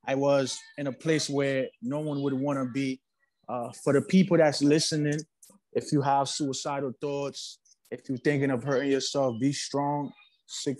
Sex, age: male, 20-39